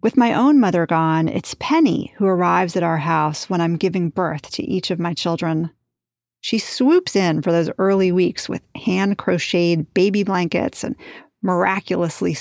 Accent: American